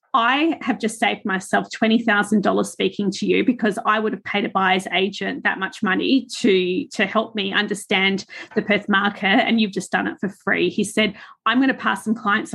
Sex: female